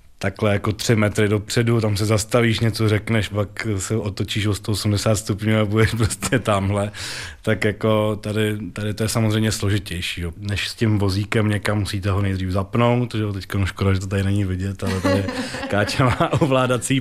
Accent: native